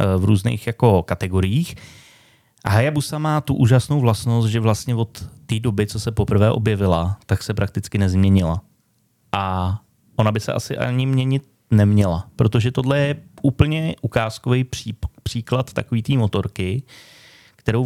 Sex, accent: male, native